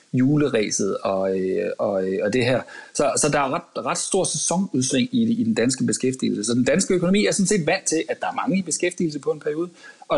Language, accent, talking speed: Danish, native, 230 wpm